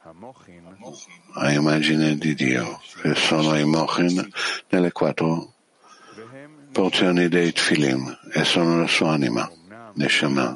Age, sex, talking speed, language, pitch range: 60-79, male, 110 wpm, Italian, 75-90 Hz